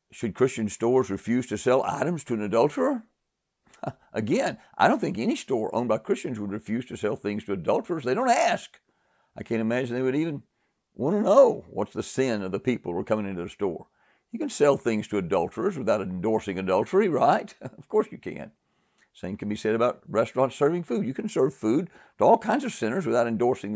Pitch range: 105-165 Hz